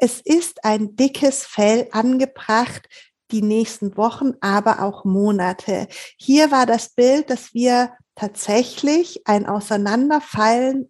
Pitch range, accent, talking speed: 235-305 Hz, German, 115 wpm